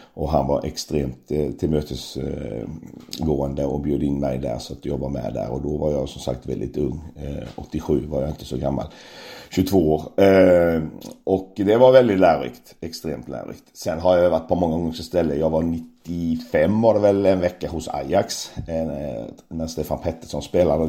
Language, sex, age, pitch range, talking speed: Swedish, male, 50-69, 75-85 Hz, 175 wpm